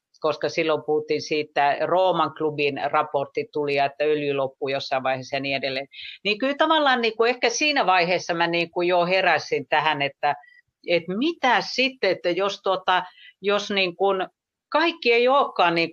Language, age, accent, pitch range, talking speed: Finnish, 50-69, native, 145-190 Hz, 150 wpm